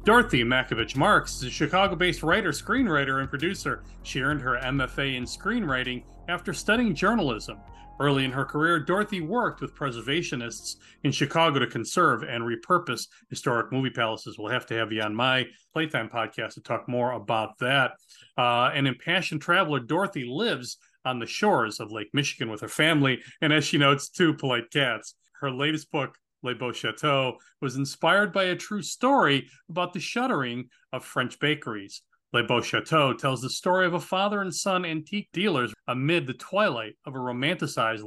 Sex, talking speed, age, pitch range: male, 170 wpm, 40-59, 120-165 Hz